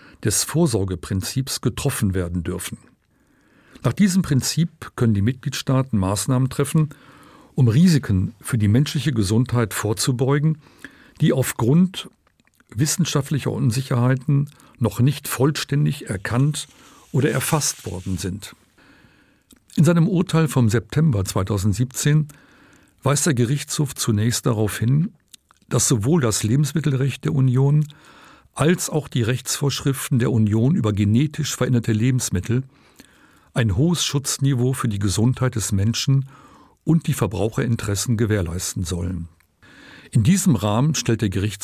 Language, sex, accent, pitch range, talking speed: German, male, German, 110-145 Hz, 115 wpm